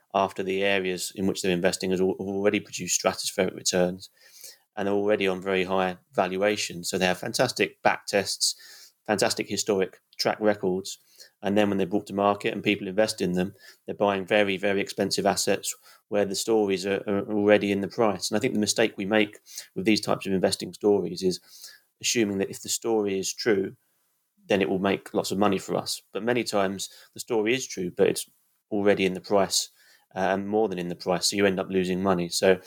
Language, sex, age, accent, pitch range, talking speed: English, male, 30-49, British, 95-105 Hz, 205 wpm